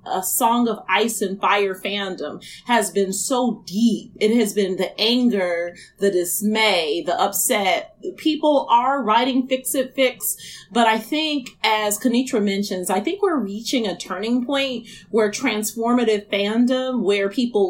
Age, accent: 30-49, American